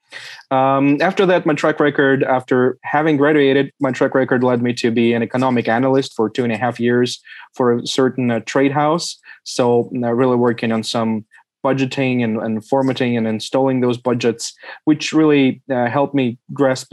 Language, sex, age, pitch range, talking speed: English, male, 20-39, 120-140 Hz, 180 wpm